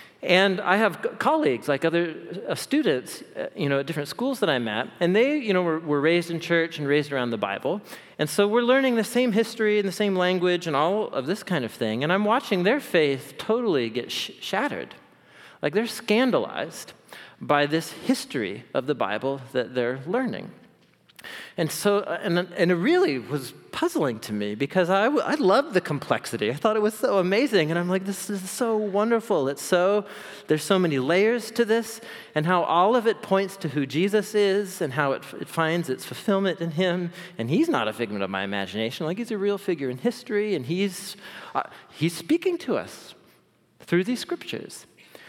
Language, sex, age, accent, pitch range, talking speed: English, male, 40-59, American, 165-225 Hz, 200 wpm